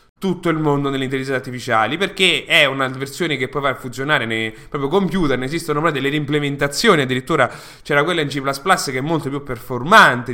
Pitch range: 130-170 Hz